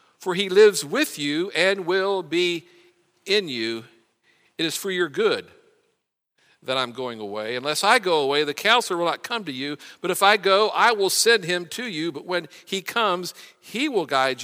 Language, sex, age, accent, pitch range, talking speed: English, male, 50-69, American, 130-195 Hz, 195 wpm